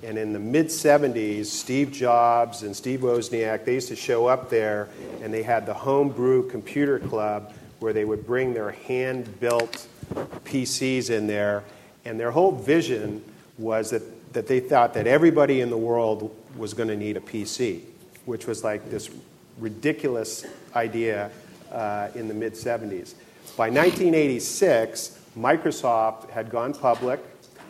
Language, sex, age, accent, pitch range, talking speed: English, male, 50-69, American, 110-130 Hz, 145 wpm